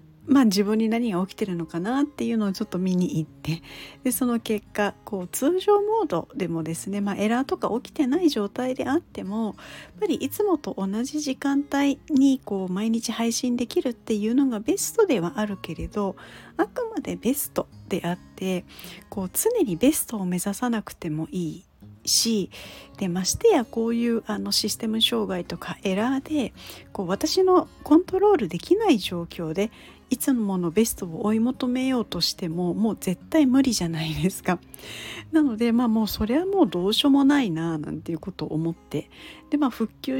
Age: 40-59